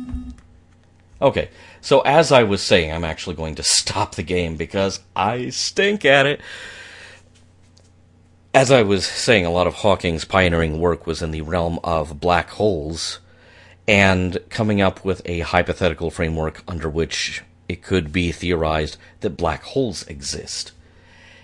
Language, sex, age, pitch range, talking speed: English, male, 40-59, 85-100 Hz, 145 wpm